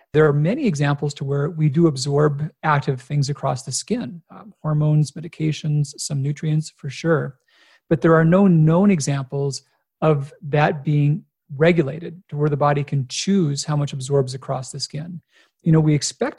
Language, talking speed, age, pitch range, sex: English, 170 wpm, 40-59, 145-170 Hz, male